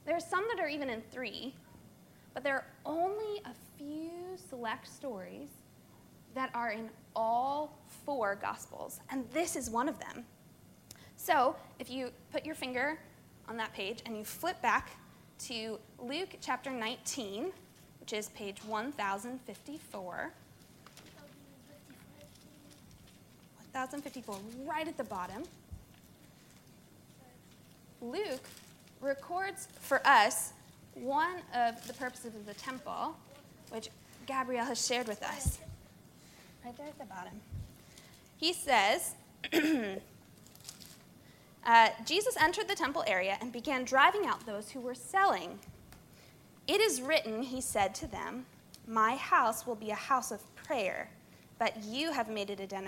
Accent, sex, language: American, female, English